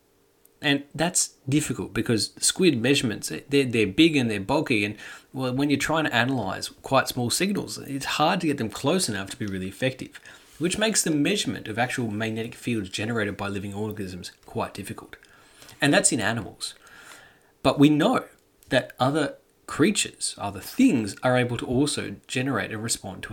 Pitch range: 105-145 Hz